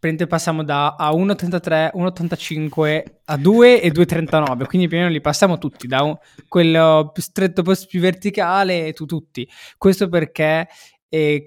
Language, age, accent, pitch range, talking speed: Italian, 20-39, native, 150-185 Hz, 140 wpm